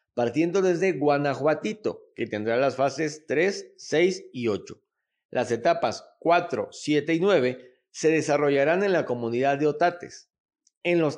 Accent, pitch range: Mexican, 125-170 Hz